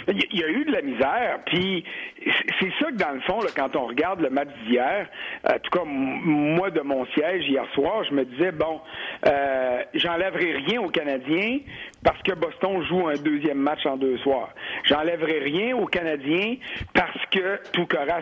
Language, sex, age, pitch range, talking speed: French, male, 60-79, 150-205 Hz, 190 wpm